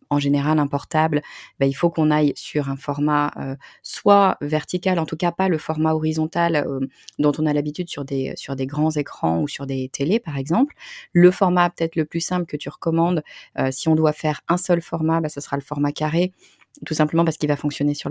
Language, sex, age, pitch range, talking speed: French, female, 30-49, 145-170 Hz, 230 wpm